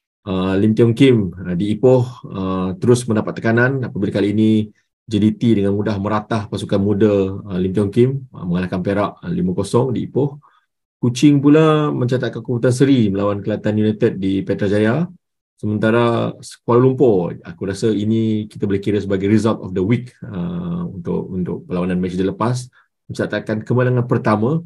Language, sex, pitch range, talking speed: Malay, male, 95-125 Hz, 155 wpm